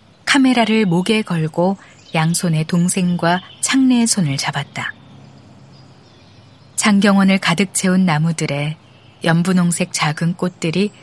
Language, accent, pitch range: Korean, native, 150-200 Hz